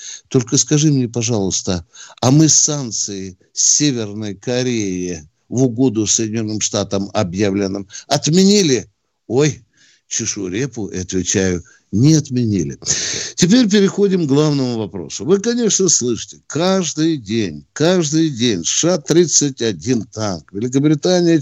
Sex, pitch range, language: male, 100-155 Hz, Russian